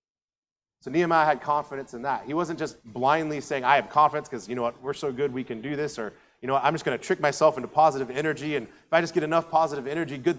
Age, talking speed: 30-49, 265 wpm